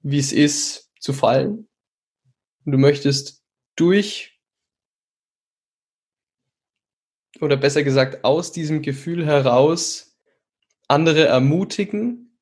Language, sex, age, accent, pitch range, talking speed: German, male, 10-29, German, 135-165 Hz, 80 wpm